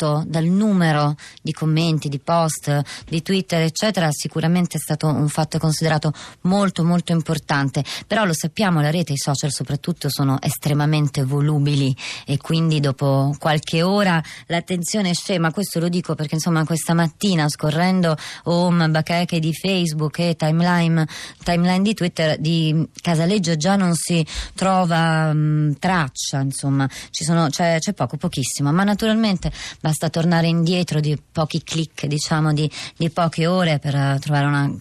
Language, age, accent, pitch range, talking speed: Italian, 20-39, native, 145-175 Hz, 145 wpm